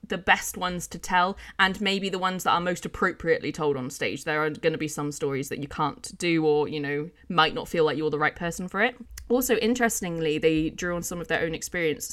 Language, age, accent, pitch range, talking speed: English, 20-39, British, 160-200 Hz, 250 wpm